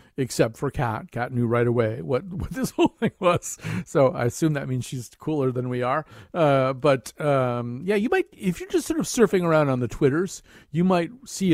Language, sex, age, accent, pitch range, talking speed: English, male, 50-69, American, 125-165 Hz, 220 wpm